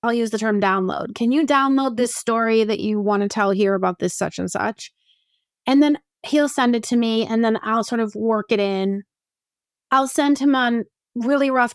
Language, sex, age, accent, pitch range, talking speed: English, female, 30-49, American, 210-265 Hz, 215 wpm